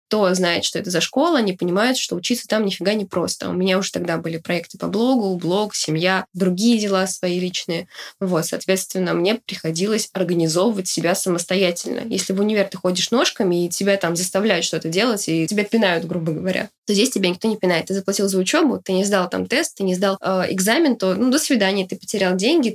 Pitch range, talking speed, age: 175-210 Hz, 210 wpm, 20-39